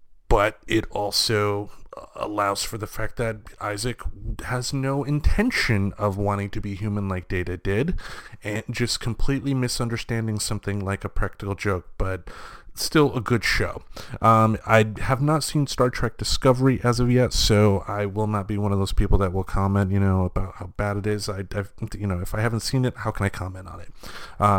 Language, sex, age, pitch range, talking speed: English, male, 30-49, 95-115 Hz, 195 wpm